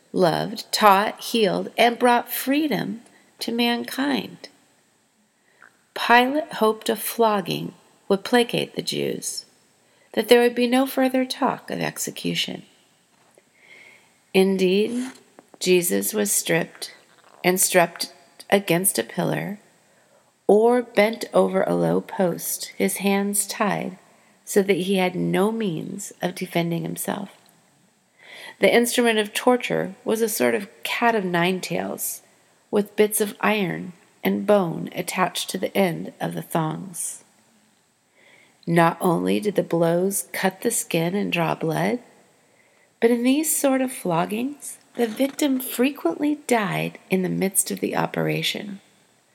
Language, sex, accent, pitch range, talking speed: English, female, American, 180-245 Hz, 125 wpm